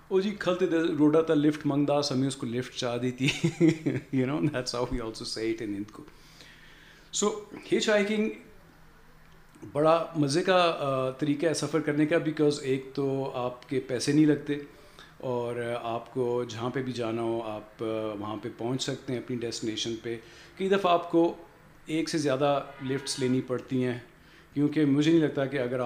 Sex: male